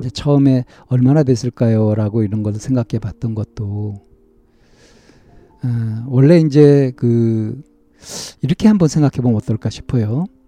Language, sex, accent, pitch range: Korean, male, native, 115-160 Hz